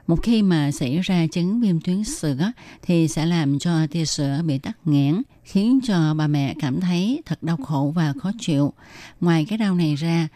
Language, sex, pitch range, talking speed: Vietnamese, female, 150-190 Hz, 205 wpm